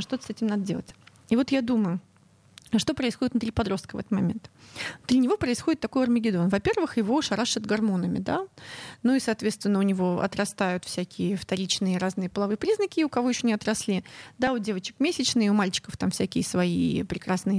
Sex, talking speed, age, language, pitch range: female, 175 wpm, 30-49, Russian, 200-260 Hz